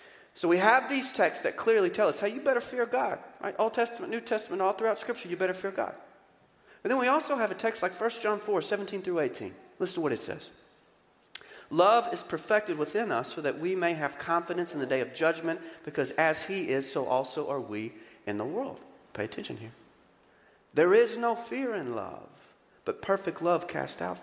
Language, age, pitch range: English, 40-59, 160-235 Hz